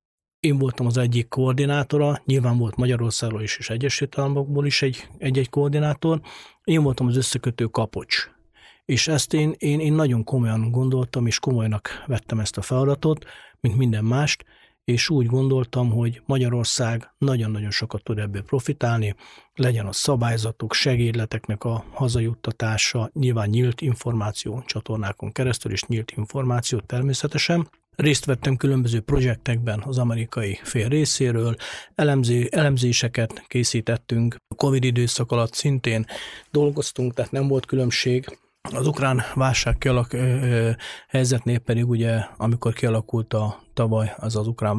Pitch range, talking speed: 110-135 Hz, 130 wpm